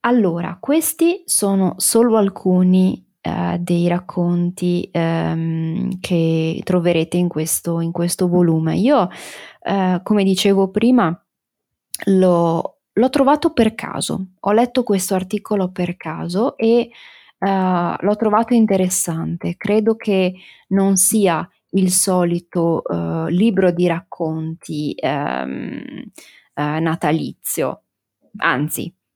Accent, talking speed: native, 100 wpm